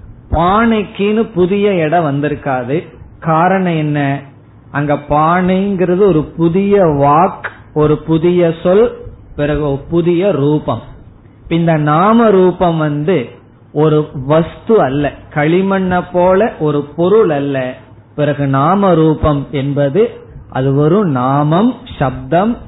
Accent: native